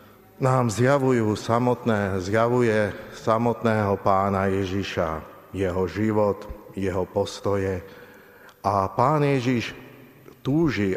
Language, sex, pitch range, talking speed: Slovak, male, 95-115 Hz, 75 wpm